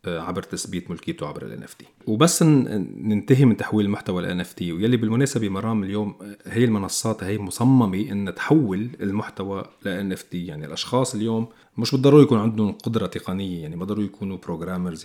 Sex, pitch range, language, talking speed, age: male, 95-115 Hz, Arabic, 150 wpm, 40-59